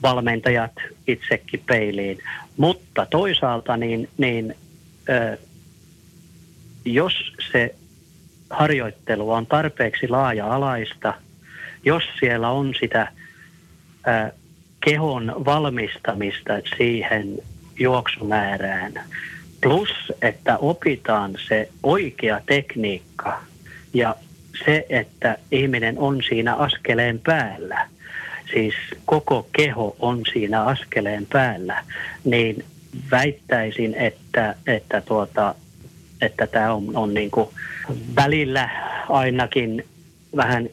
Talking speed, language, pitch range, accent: 80 wpm, Finnish, 110-135 Hz, native